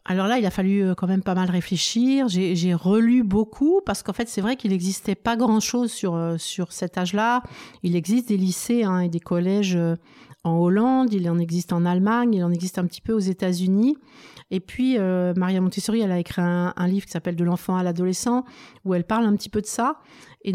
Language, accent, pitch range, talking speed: French, French, 180-220 Hz, 230 wpm